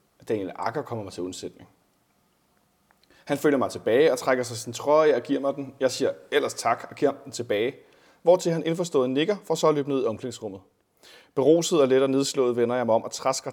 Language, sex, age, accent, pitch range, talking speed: Danish, male, 30-49, native, 120-170 Hz, 215 wpm